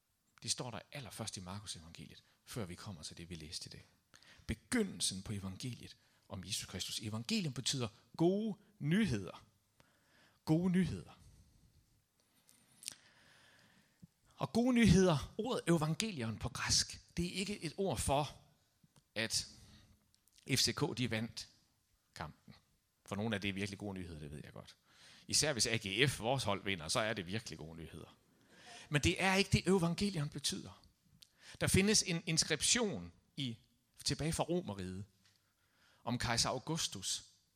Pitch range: 100-160 Hz